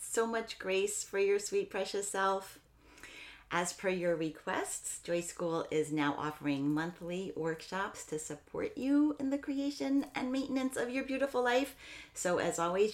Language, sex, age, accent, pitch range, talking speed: English, female, 40-59, American, 155-210 Hz, 160 wpm